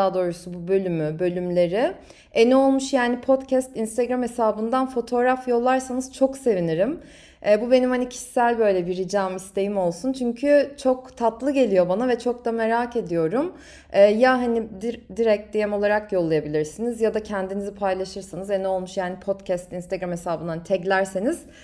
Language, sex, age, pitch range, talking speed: Turkish, female, 30-49, 195-255 Hz, 145 wpm